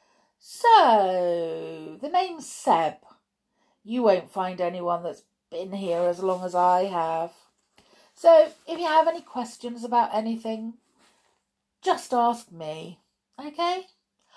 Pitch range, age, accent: 175-280 Hz, 50-69, British